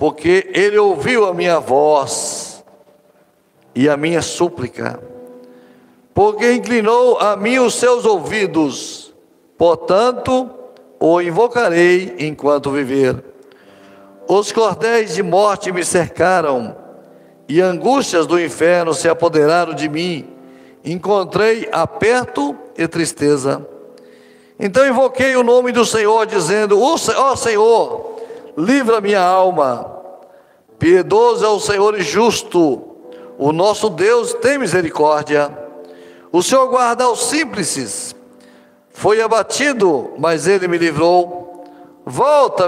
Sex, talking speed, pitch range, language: male, 105 wpm, 150-240 Hz, Portuguese